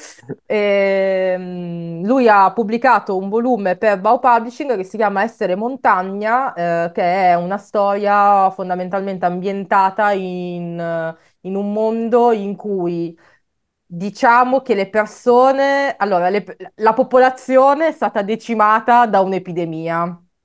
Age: 20-39